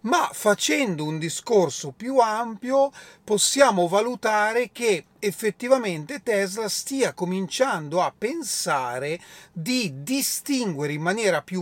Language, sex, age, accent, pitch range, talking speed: Italian, male, 40-59, native, 155-220 Hz, 105 wpm